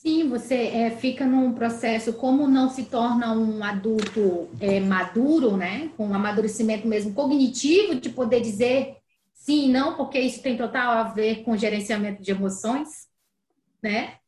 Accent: Brazilian